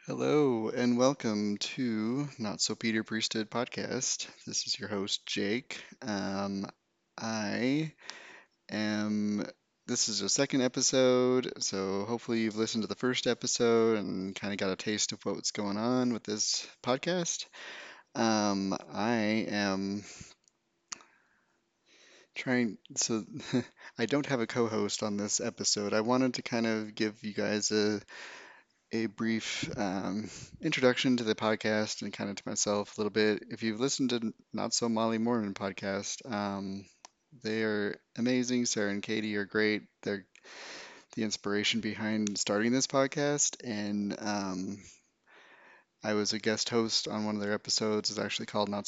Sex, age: male, 30-49